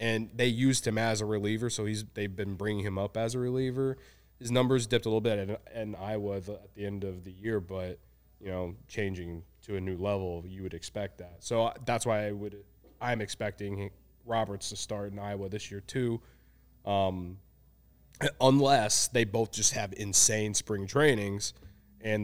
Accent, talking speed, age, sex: American, 190 wpm, 20-39, male